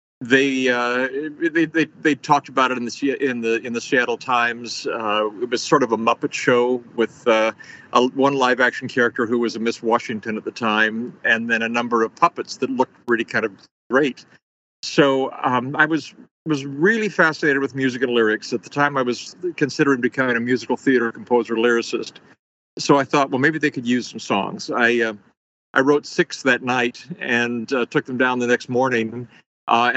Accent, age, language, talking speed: American, 50-69, English, 200 wpm